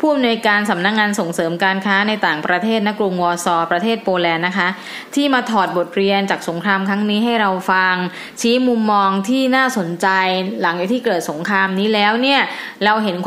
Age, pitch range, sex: 20-39, 185-230 Hz, female